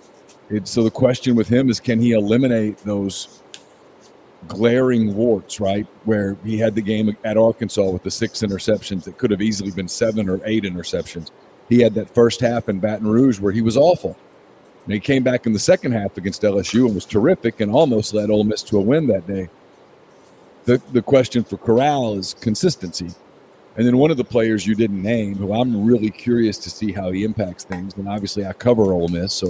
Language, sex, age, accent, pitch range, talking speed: English, male, 50-69, American, 100-110 Hz, 205 wpm